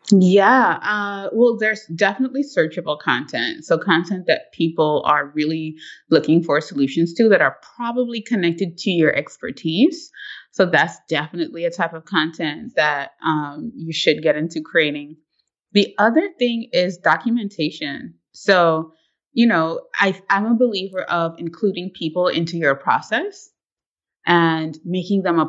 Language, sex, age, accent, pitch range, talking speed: English, female, 20-39, American, 160-205 Hz, 140 wpm